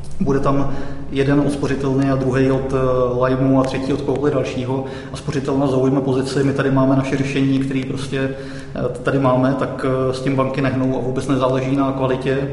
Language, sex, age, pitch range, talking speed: Czech, male, 30-49, 130-140 Hz, 175 wpm